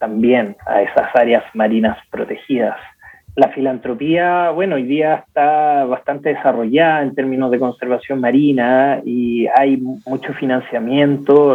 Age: 20-39